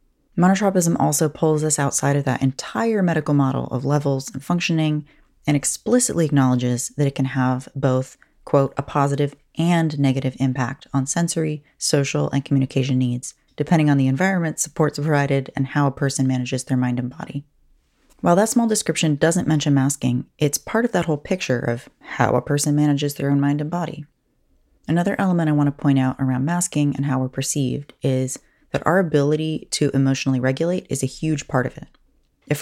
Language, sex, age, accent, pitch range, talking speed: English, female, 30-49, American, 130-155 Hz, 180 wpm